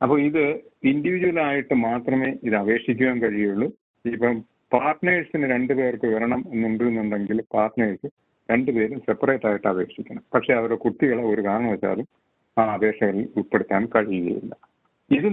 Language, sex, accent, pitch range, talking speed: Malayalam, male, native, 105-120 Hz, 115 wpm